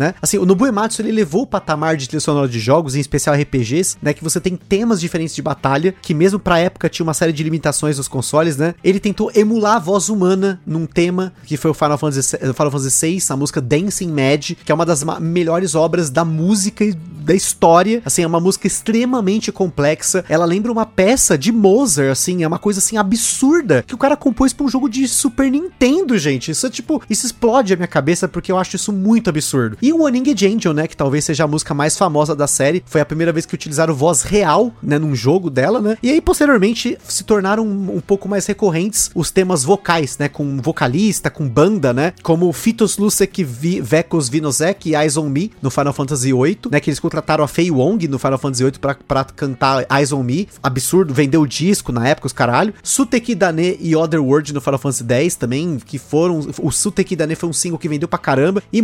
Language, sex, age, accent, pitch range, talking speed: Portuguese, male, 30-49, Brazilian, 150-200 Hz, 220 wpm